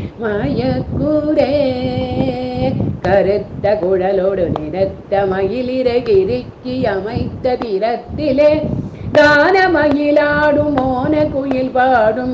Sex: female